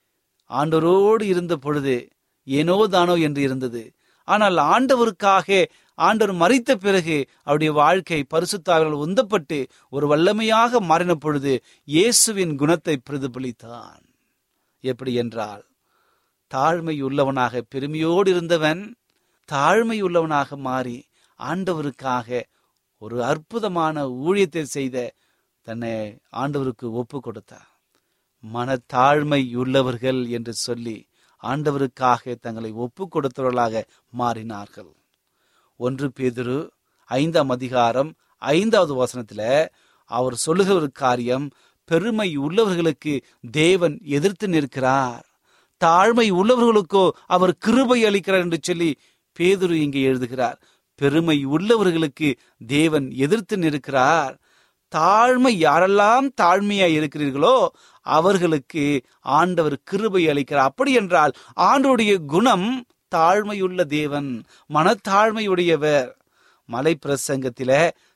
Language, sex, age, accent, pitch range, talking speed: Tamil, male, 30-49, native, 130-185 Hz, 80 wpm